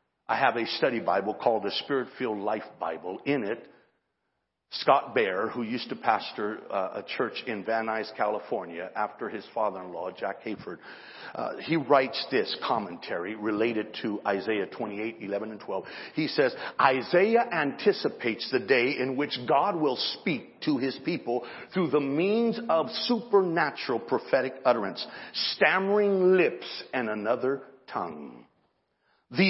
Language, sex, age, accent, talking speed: English, male, 50-69, American, 140 wpm